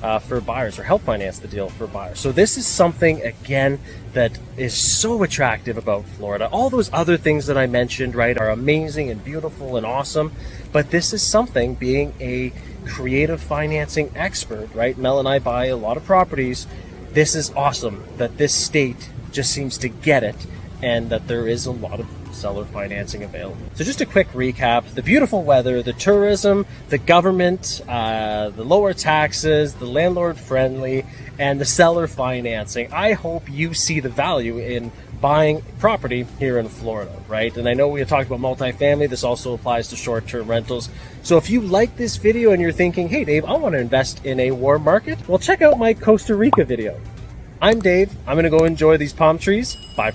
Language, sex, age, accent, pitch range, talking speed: English, male, 30-49, American, 115-160 Hz, 190 wpm